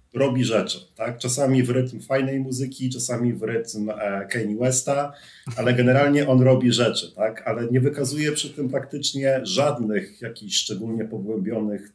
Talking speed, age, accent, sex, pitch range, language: 145 wpm, 40-59, native, male, 110-130 Hz, Polish